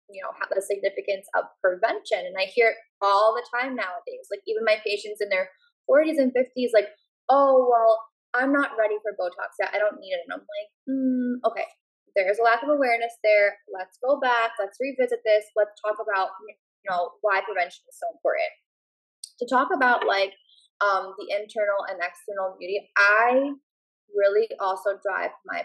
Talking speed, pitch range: 185 wpm, 195-255 Hz